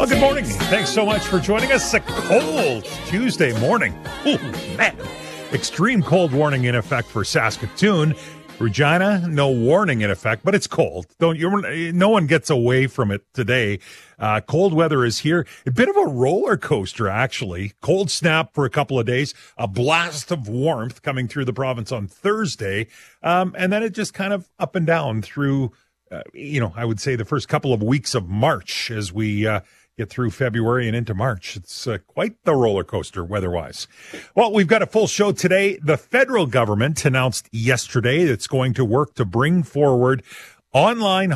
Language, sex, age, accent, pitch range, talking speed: English, male, 40-59, American, 120-170 Hz, 185 wpm